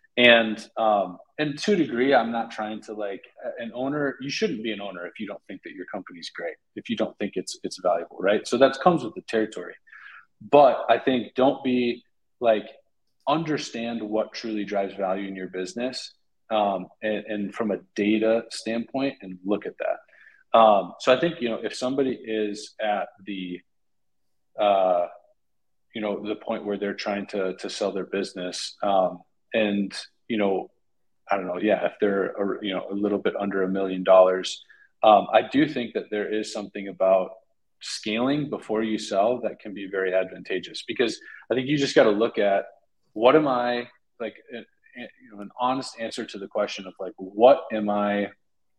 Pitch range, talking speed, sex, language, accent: 100-125 Hz, 180 wpm, male, English, American